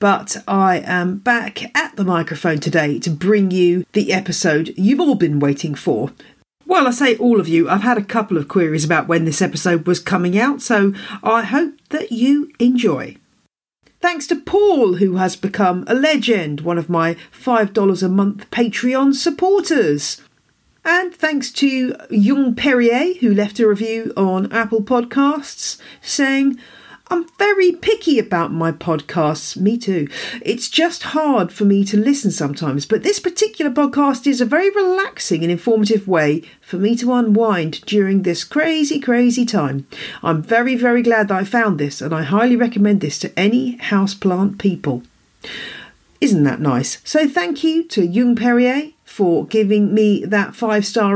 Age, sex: 40-59, female